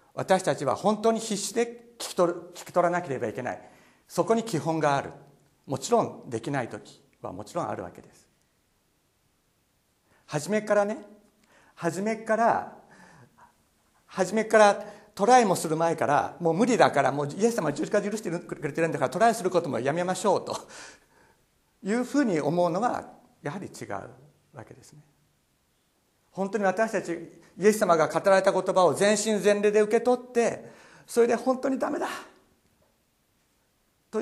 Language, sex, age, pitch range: Japanese, male, 50-69, 145-215 Hz